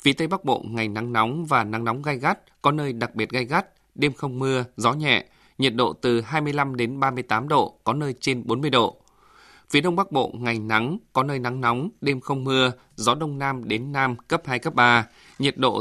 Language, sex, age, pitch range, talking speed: Vietnamese, male, 20-39, 120-145 Hz, 225 wpm